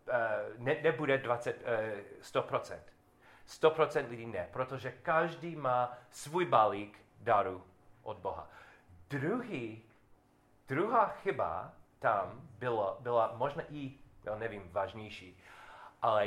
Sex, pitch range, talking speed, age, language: male, 115-145 Hz, 95 wpm, 40-59, Czech